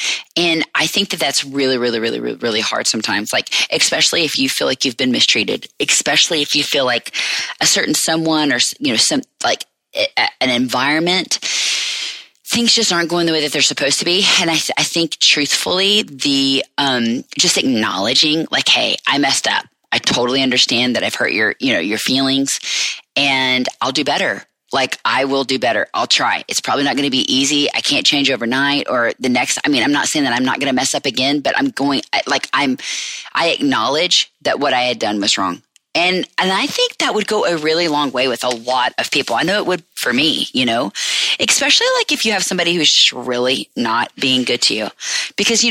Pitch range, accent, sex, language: 130-180 Hz, American, female, English